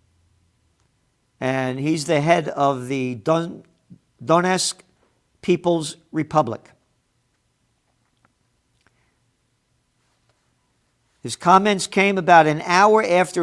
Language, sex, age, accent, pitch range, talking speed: English, male, 50-69, American, 120-165 Hz, 70 wpm